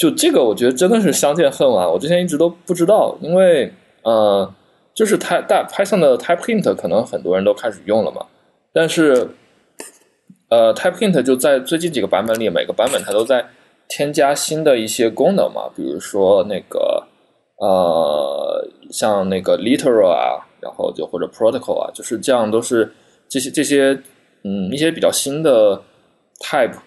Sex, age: male, 20-39